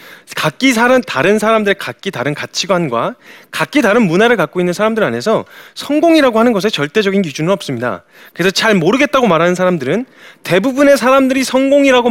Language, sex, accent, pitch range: Korean, male, native, 185-280 Hz